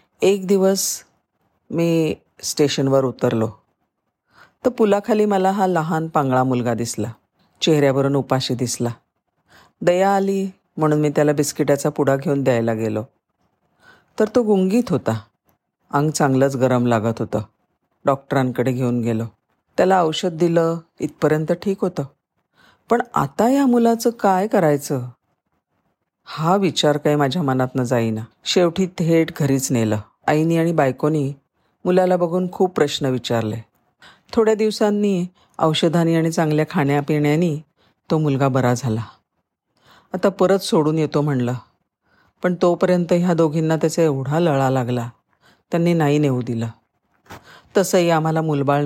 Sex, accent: female, native